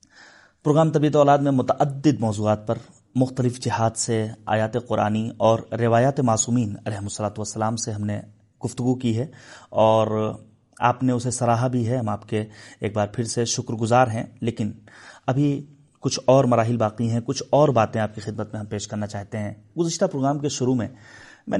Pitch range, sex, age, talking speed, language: 115-140 Hz, male, 30-49, 185 wpm, Urdu